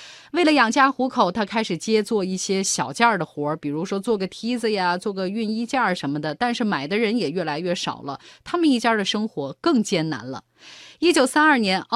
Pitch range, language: 175-250 Hz, Chinese